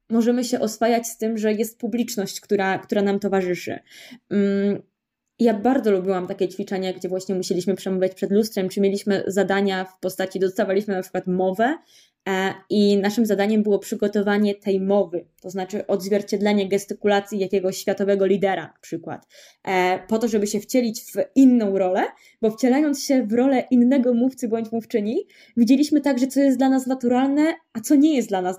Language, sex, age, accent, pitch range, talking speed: Polish, female, 20-39, native, 200-260 Hz, 160 wpm